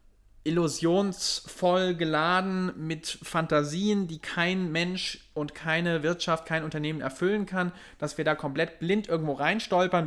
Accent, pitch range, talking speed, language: German, 150-185 Hz, 125 wpm, German